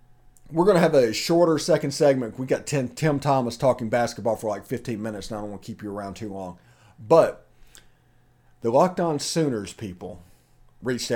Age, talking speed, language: 40-59, 195 wpm, English